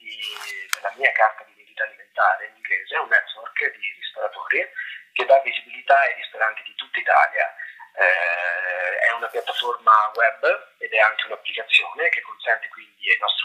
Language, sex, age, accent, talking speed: Italian, male, 30-49, native, 150 wpm